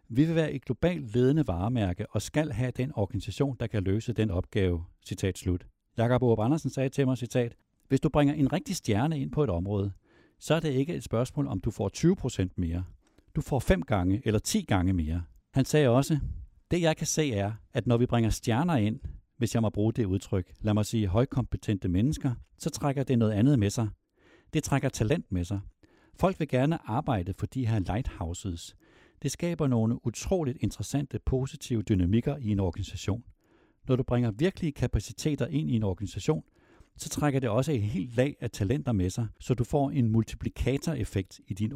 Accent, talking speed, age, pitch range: native, 195 wpm, 60-79, 100-140 Hz